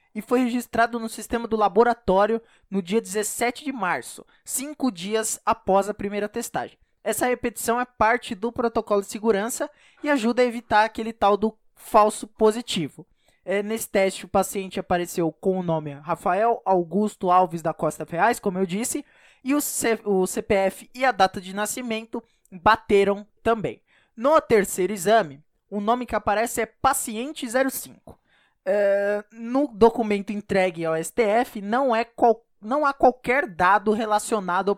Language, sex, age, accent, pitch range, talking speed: Portuguese, male, 20-39, Brazilian, 200-235 Hz, 145 wpm